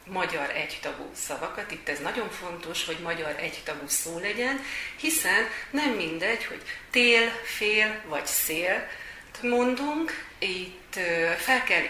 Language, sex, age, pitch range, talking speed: Hungarian, female, 40-59, 170-230 Hz, 120 wpm